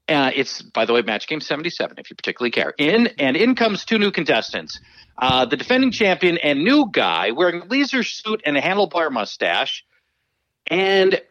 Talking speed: 185 wpm